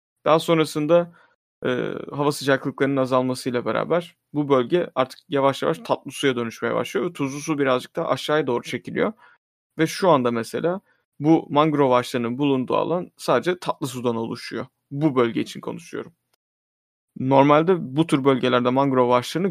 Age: 30-49